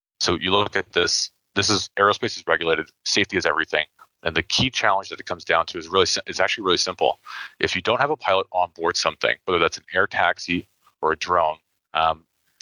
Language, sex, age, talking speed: English, male, 30-49, 220 wpm